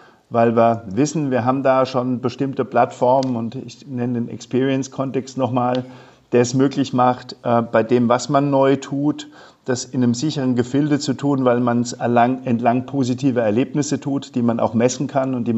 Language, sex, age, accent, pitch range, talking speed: German, male, 50-69, German, 120-135 Hz, 175 wpm